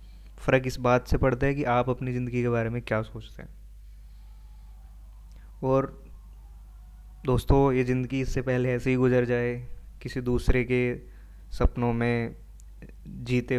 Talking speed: 140 wpm